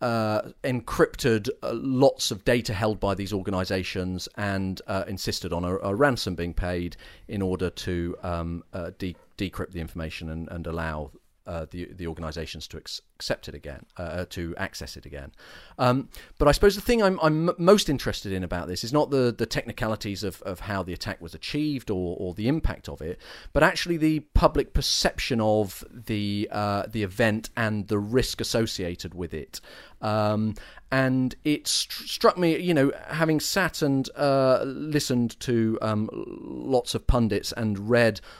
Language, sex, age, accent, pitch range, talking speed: English, male, 40-59, British, 90-130 Hz, 170 wpm